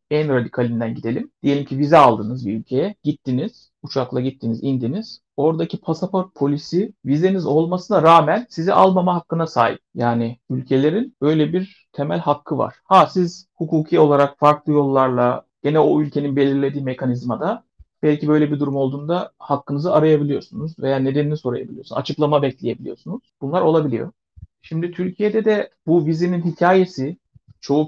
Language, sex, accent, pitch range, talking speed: Turkish, male, native, 130-165 Hz, 135 wpm